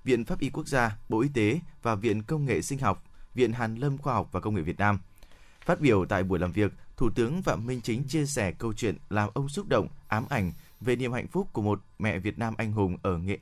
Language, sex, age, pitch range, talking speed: Vietnamese, male, 20-39, 105-140 Hz, 260 wpm